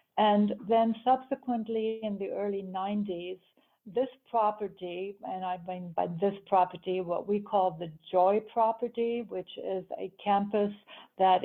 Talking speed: 135 wpm